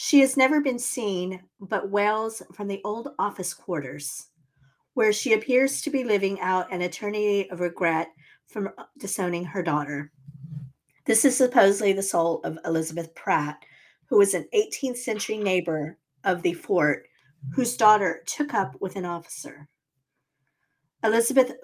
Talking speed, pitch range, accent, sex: 145 wpm, 150-215 Hz, American, female